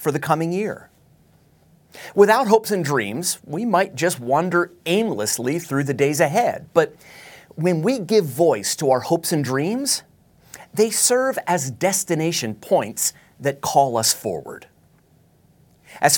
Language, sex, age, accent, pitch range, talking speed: English, male, 30-49, American, 135-190 Hz, 135 wpm